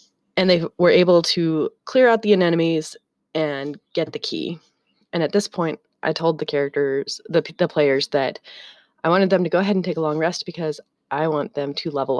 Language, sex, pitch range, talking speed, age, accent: English, female, 155-185 Hz, 205 wpm, 20-39, American